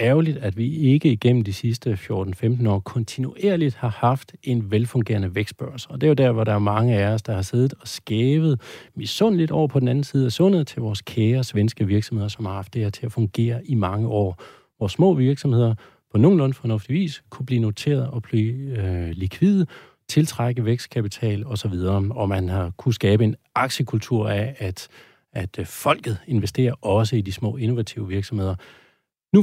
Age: 40-59